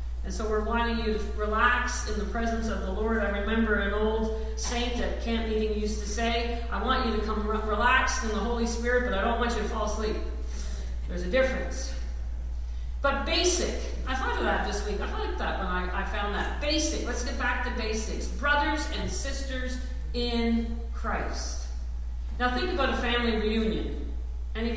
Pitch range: 200-240 Hz